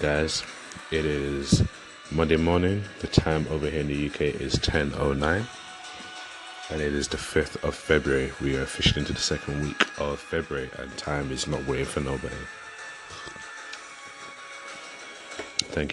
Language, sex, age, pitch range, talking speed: English, male, 30-49, 70-75 Hz, 145 wpm